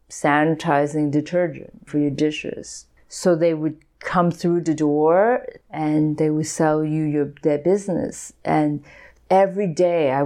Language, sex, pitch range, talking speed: English, female, 150-175 Hz, 140 wpm